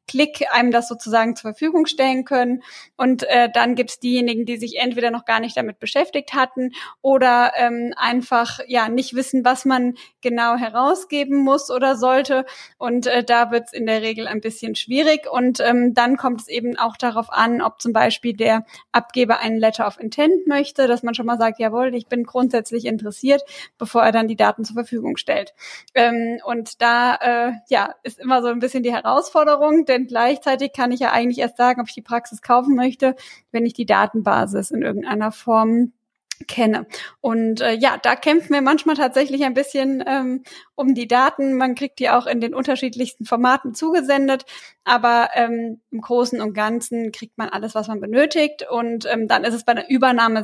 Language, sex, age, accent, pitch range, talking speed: German, female, 10-29, German, 230-265 Hz, 190 wpm